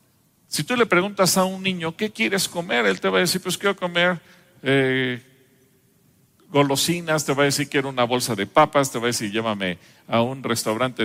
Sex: male